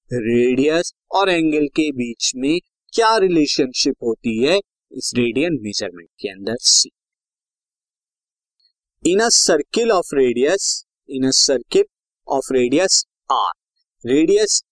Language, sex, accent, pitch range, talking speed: Hindi, male, native, 130-185 Hz, 115 wpm